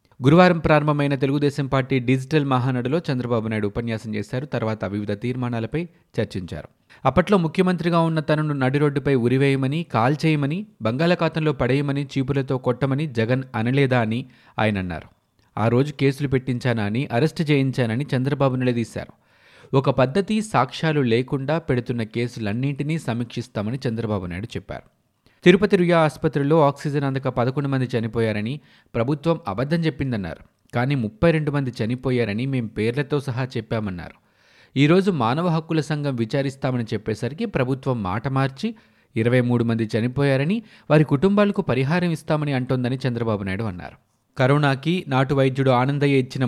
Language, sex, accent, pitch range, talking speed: Telugu, male, native, 120-150 Hz, 120 wpm